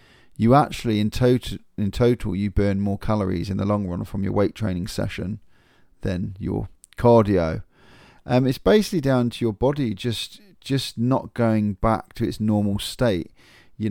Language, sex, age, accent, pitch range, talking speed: English, male, 30-49, British, 100-115 Hz, 170 wpm